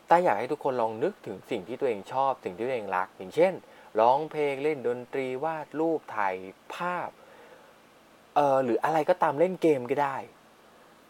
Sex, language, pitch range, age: male, Thai, 105-160 Hz, 20-39